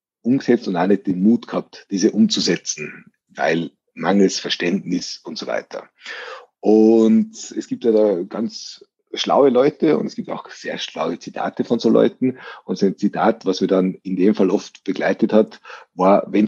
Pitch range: 95-140 Hz